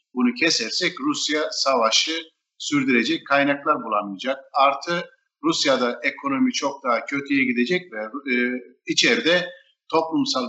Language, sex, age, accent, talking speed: Turkish, male, 50-69, native, 105 wpm